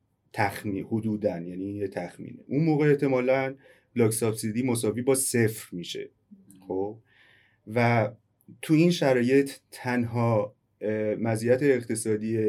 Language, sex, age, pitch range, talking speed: Persian, male, 30-49, 105-130 Hz, 100 wpm